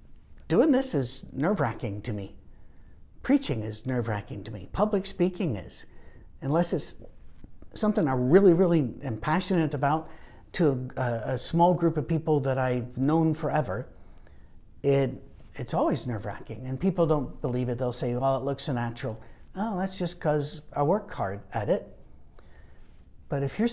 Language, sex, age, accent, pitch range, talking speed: English, male, 60-79, American, 115-160 Hz, 165 wpm